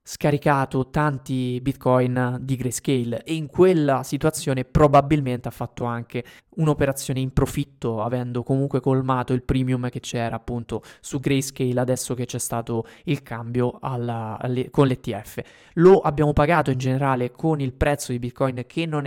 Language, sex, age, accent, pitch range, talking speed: Italian, male, 20-39, native, 125-150 Hz, 145 wpm